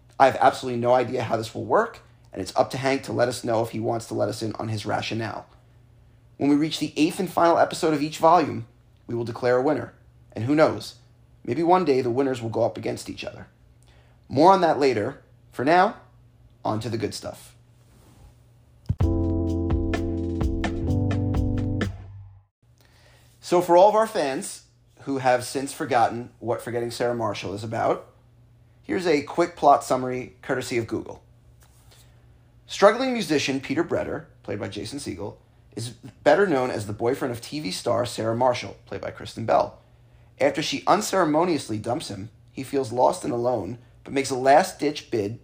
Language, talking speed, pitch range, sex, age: English, 175 wpm, 115-130 Hz, male, 30-49